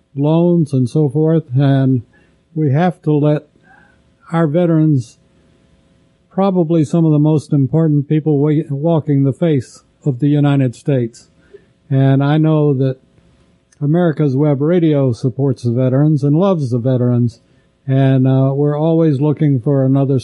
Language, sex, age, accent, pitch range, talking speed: English, male, 60-79, American, 130-155 Hz, 135 wpm